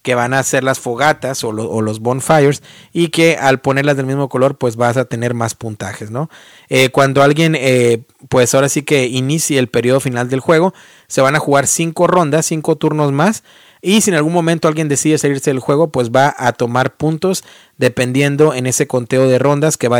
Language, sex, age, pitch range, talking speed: Spanish, male, 30-49, 130-160 Hz, 215 wpm